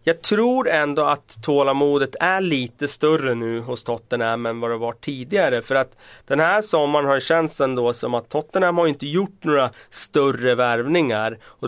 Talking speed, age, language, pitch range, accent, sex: 180 wpm, 30-49, Swedish, 115-145 Hz, native, male